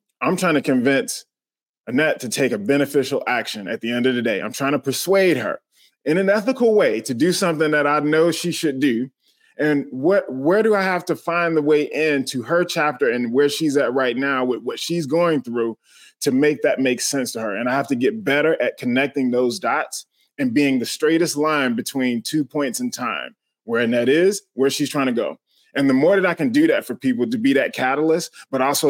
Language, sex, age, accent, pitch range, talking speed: English, male, 20-39, American, 140-175 Hz, 225 wpm